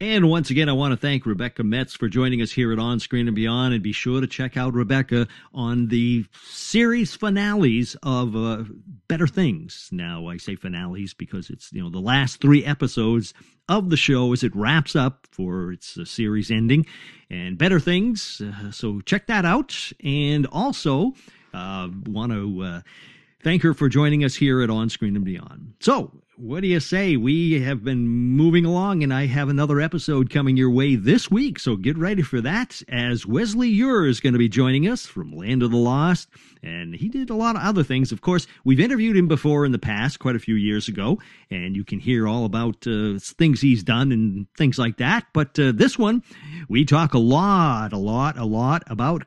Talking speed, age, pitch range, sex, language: 205 wpm, 50-69, 115-165 Hz, male, English